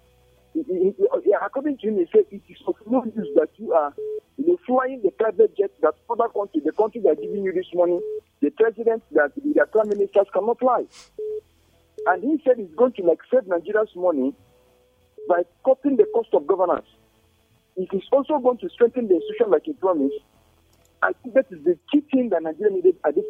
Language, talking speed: English, 205 wpm